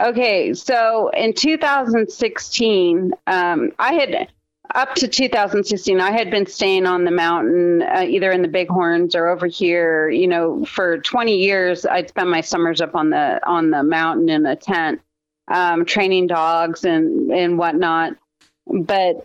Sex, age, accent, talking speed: female, 30-49, American, 155 wpm